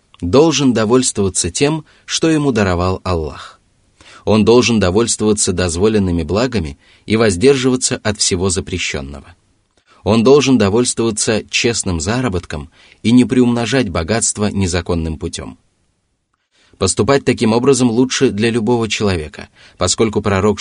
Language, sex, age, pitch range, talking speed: Russian, male, 30-49, 90-120 Hz, 110 wpm